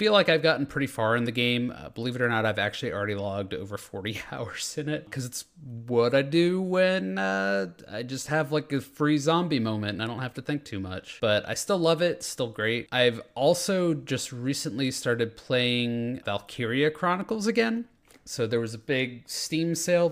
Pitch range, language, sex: 110-145 Hz, English, male